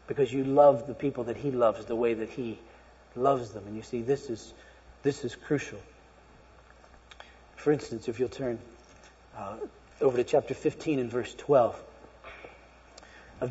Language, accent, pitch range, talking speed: English, American, 115-155 Hz, 155 wpm